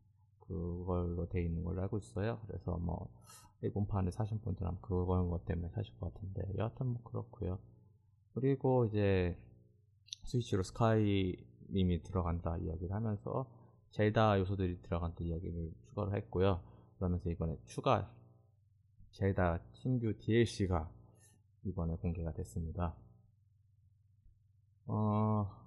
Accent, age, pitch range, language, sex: native, 20-39, 90-110 Hz, Korean, male